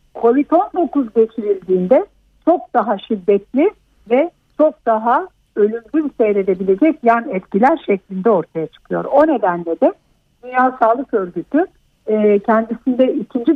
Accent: native